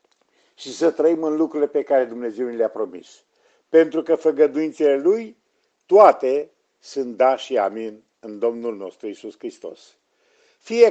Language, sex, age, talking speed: Romanian, male, 50-69, 145 wpm